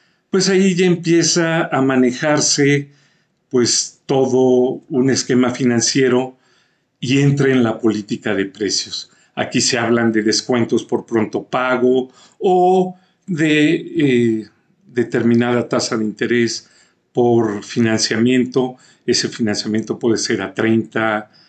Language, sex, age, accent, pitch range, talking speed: Spanish, male, 50-69, Mexican, 120-160 Hz, 110 wpm